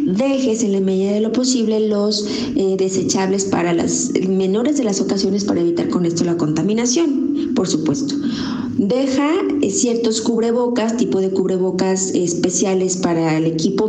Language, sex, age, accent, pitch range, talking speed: Spanish, female, 30-49, Mexican, 185-245 Hz, 150 wpm